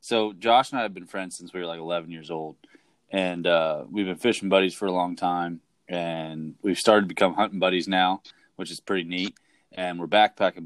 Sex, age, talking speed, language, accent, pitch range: male, 20-39, 220 wpm, English, American, 90-105 Hz